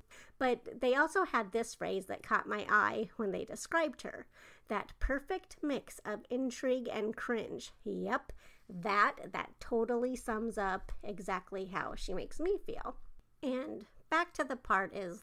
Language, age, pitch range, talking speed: English, 50-69, 215-305 Hz, 155 wpm